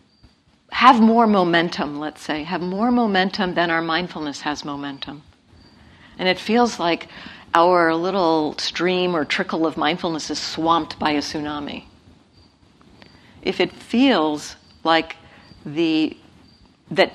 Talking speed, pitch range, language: 120 wpm, 155-195 Hz, English